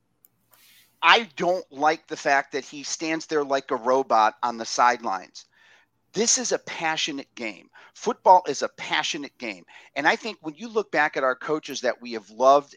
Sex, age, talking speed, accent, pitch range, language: male, 40-59, 185 wpm, American, 130-180 Hz, English